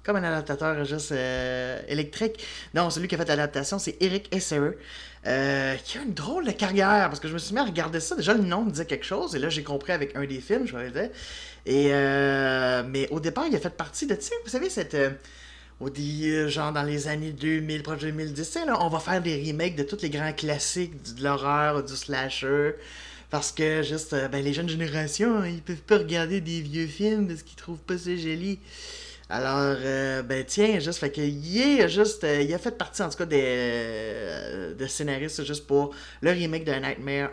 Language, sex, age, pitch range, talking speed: French, male, 30-49, 140-190 Hz, 215 wpm